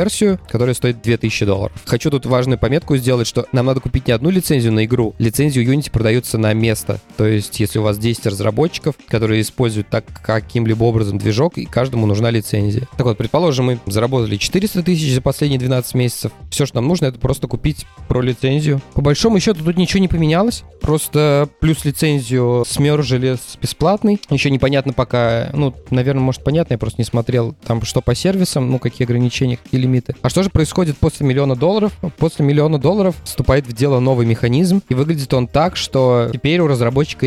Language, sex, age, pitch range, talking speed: Russian, male, 20-39, 120-150 Hz, 185 wpm